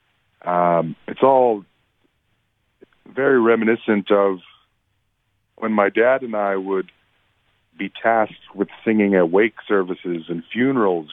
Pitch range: 90-110 Hz